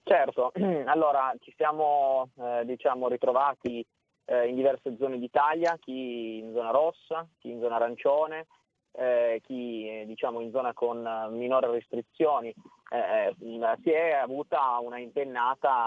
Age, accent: 20-39, native